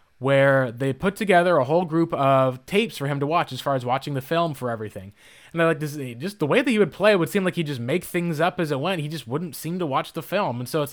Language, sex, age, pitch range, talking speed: English, male, 20-39, 140-170 Hz, 305 wpm